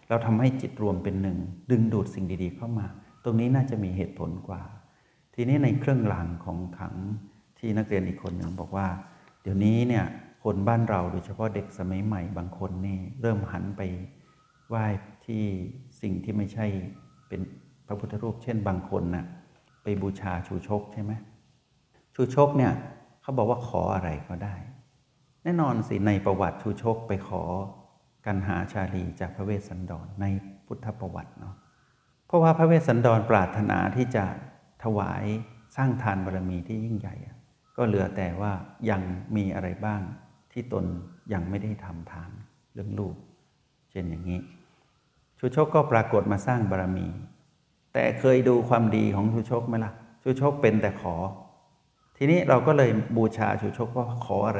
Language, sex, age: Thai, male, 60-79